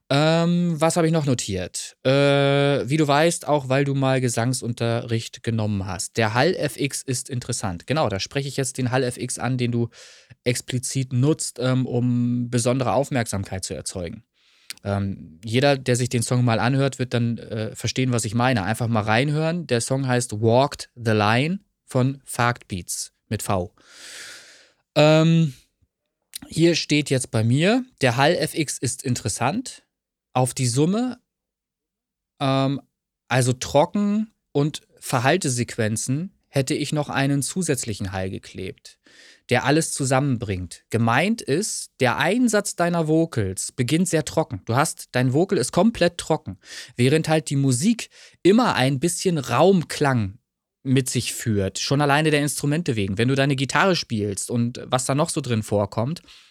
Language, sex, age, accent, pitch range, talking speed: German, male, 20-39, German, 120-150 Hz, 150 wpm